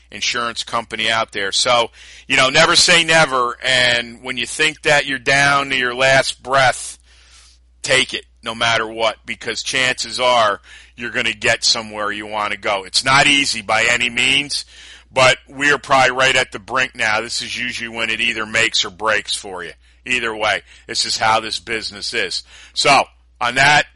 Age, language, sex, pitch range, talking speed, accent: 50-69, English, male, 120-150 Hz, 190 wpm, American